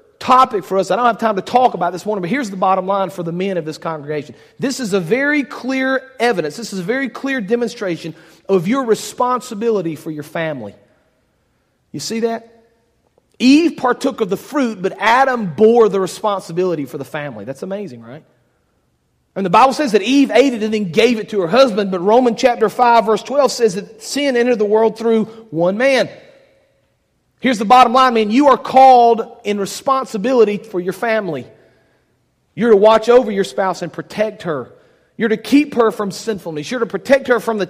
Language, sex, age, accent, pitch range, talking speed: English, male, 40-59, American, 185-245 Hz, 195 wpm